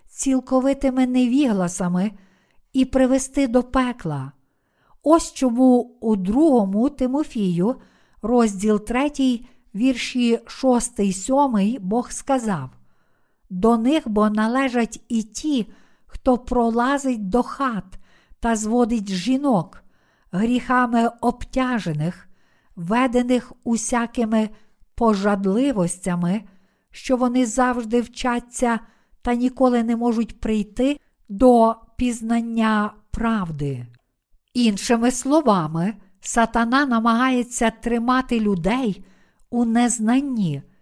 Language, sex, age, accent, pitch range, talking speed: Ukrainian, female, 50-69, native, 210-255 Hz, 80 wpm